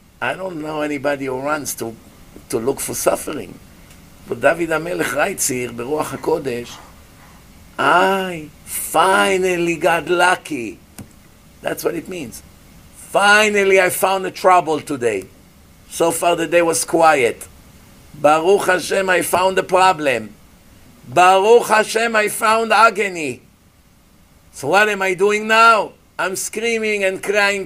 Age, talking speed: 50-69, 125 wpm